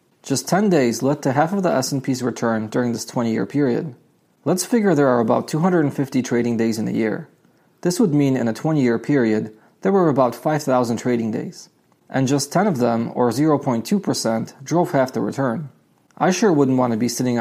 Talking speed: 195 wpm